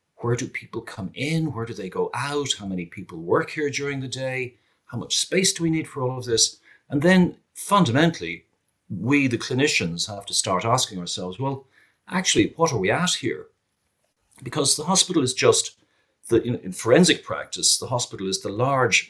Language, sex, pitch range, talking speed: English, male, 105-145 Hz, 190 wpm